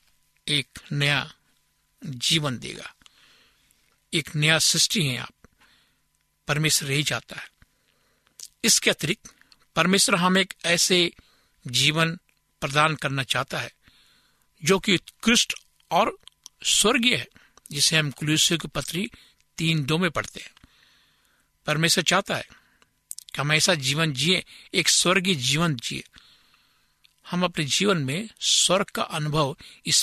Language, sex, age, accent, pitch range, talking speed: Hindi, male, 60-79, native, 145-175 Hz, 120 wpm